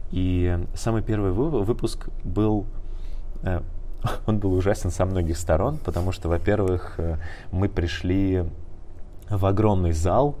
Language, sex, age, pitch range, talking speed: Russian, male, 20-39, 85-100 Hz, 110 wpm